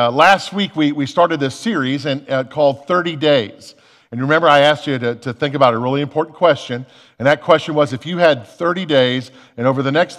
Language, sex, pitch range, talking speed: English, male, 130-160 Hz, 230 wpm